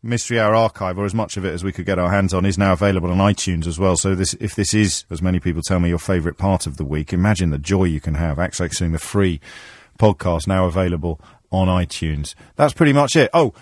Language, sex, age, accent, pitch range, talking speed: English, male, 40-59, British, 85-115 Hz, 245 wpm